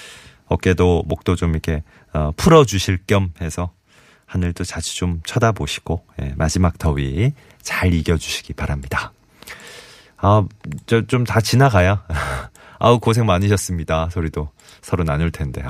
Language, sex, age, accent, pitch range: Korean, male, 30-49, native, 80-115 Hz